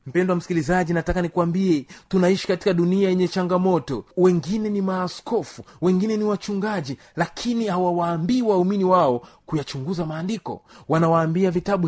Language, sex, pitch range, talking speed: Swahili, male, 175-225 Hz, 115 wpm